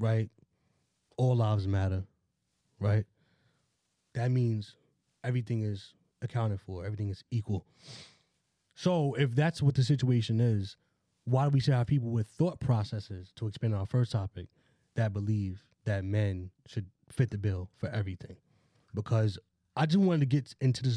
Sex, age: male, 20-39